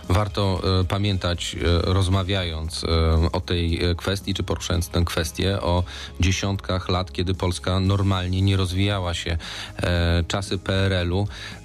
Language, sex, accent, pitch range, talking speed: Polish, male, native, 90-100 Hz, 110 wpm